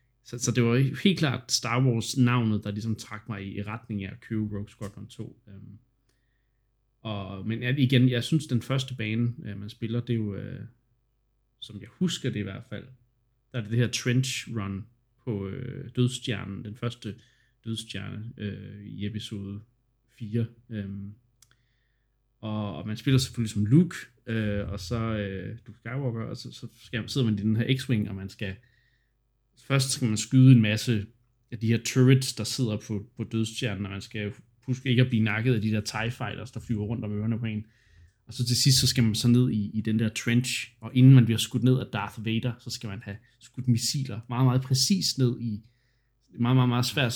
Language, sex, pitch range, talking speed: Danish, male, 110-125 Hz, 200 wpm